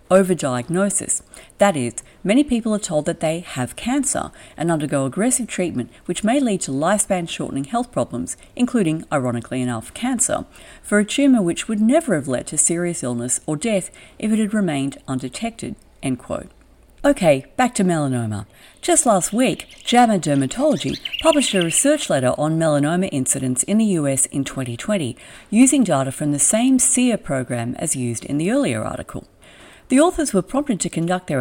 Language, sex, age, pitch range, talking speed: English, female, 50-69, 135-225 Hz, 165 wpm